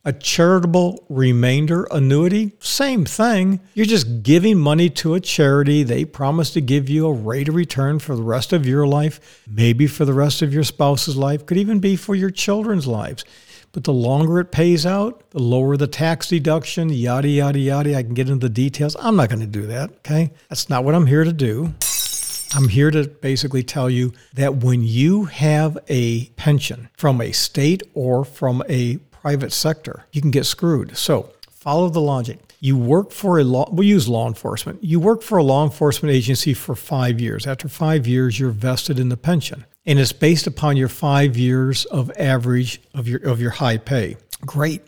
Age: 60-79